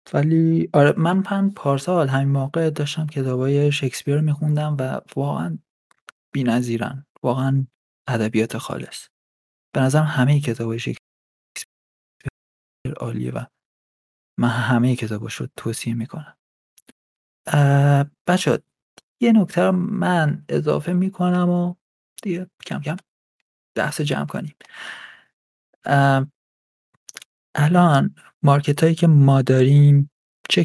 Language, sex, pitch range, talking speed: Persian, male, 120-155 Hz, 100 wpm